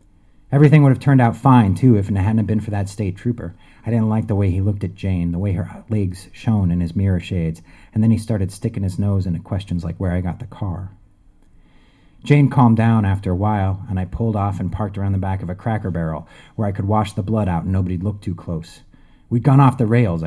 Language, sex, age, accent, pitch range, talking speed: English, male, 30-49, American, 90-110 Hz, 250 wpm